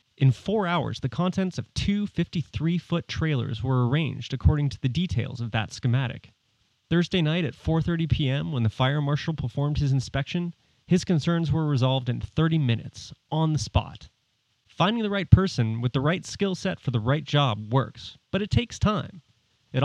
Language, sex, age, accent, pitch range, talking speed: English, male, 30-49, American, 120-155 Hz, 180 wpm